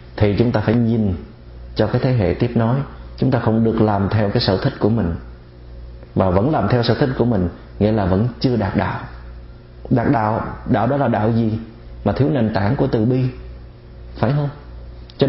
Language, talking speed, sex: Vietnamese, 210 wpm, male